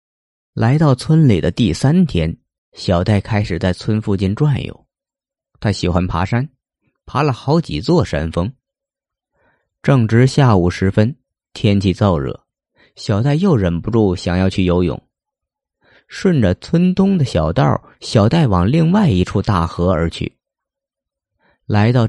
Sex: male